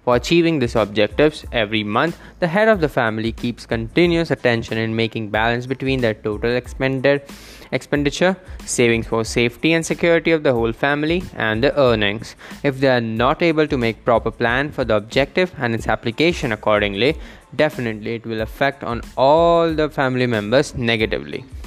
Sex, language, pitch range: male, English, 110-150 Hz